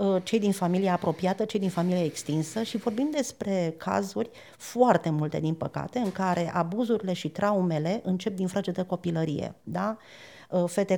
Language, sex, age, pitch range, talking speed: Romanian, female, 50-69, 170-205 Hz, 155 wpm